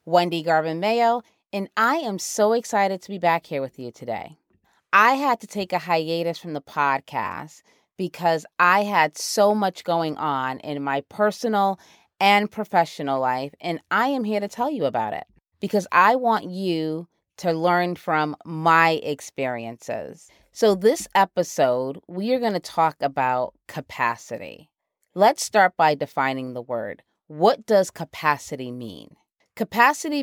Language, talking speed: English, 150 wpm